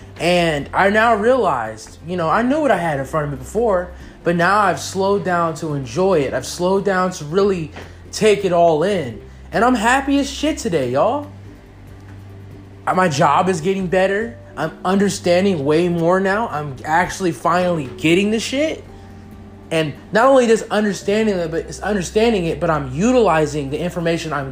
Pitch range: 145-225 Hz